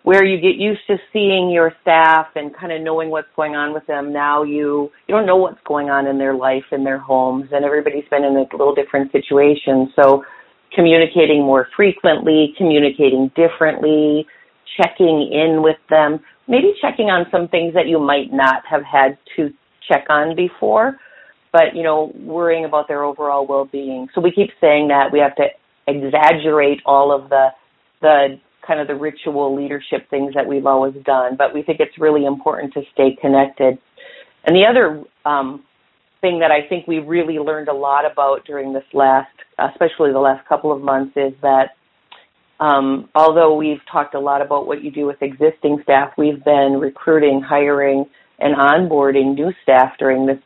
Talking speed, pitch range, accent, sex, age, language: 180 wpm, 140-160 Hz, American, female, 40-59, English